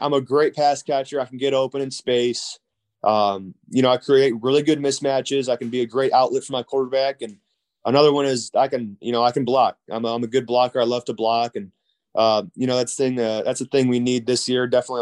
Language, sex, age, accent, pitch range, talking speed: English, male, 20-39, American, 115-135 Hz, 255 wpm